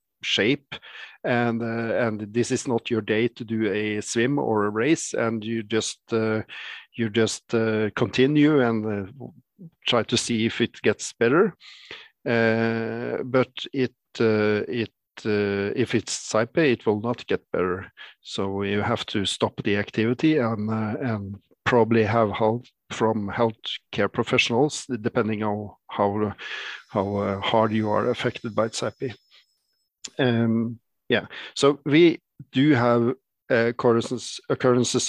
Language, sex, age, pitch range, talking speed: English, male, 50-69, 110-125 Hz, 140 wpm